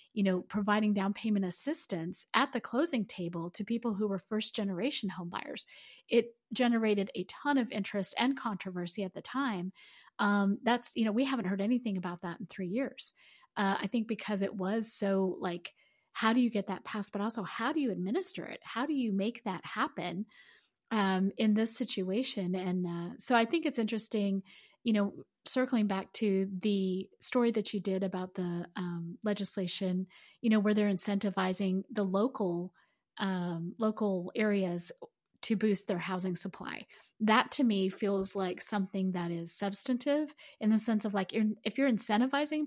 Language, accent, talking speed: English, American, 175 wpm